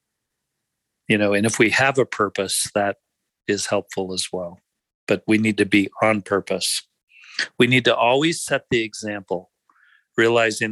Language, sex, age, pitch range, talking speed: English, male, 50-69, 105-140 Hz, 155 wpm